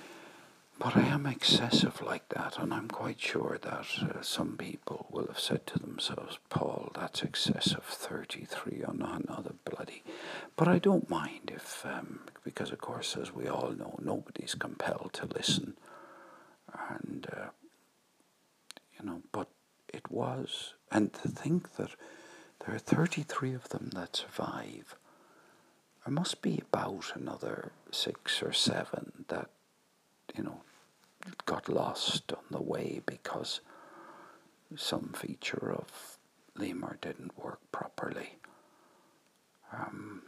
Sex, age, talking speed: male, 60-79, 130 wpm